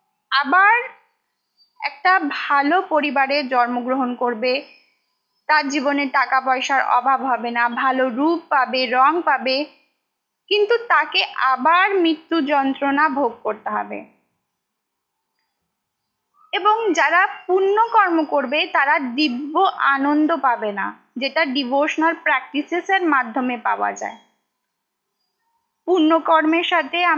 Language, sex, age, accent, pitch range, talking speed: Bengali, female, 20-39, native, 265-370 Hz, 40 wpm